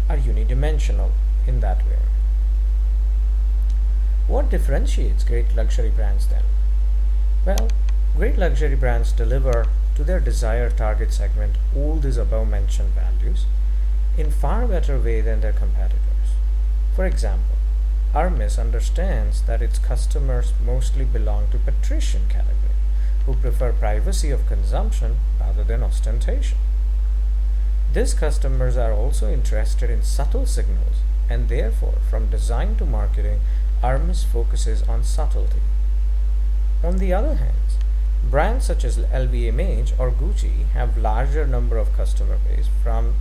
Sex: male